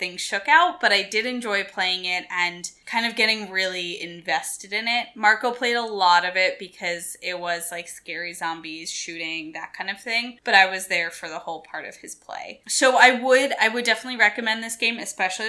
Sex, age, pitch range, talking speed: female, 10-29, 180-220 Hz, 215 wpm